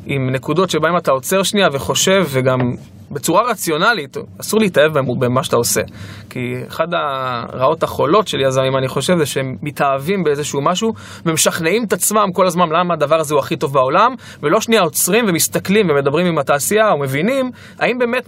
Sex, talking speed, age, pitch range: male, 165 wpm, 20-39, 140-205 Hz